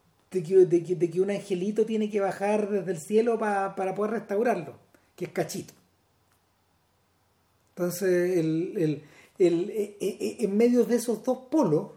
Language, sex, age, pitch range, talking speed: Spanish, male, 40-59, 160-215 Hz, 120 wpm